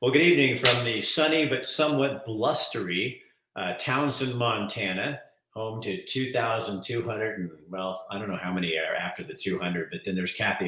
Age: 50-69